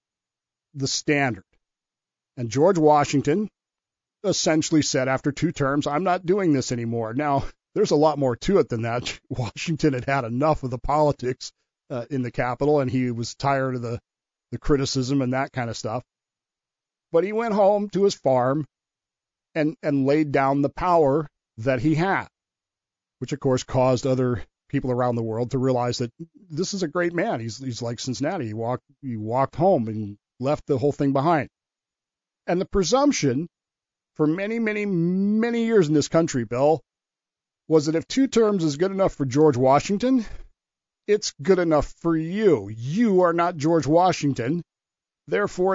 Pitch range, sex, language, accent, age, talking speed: 130-170 Hz, male, English, American, 40-59, 170 wpm